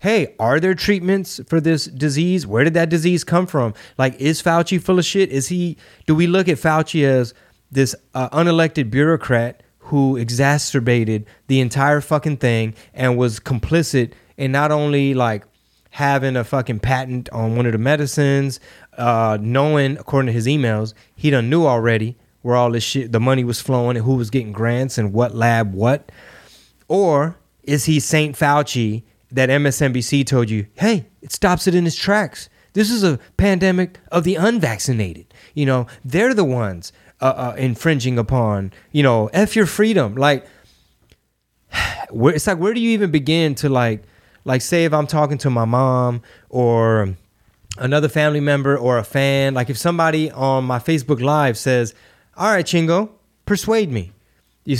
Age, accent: 30-49, American